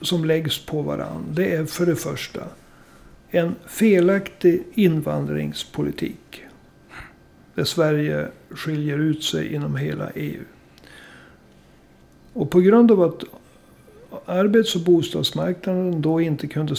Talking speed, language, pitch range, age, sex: 110 wpm, Swedish, 135-180 Hz, 60-79, male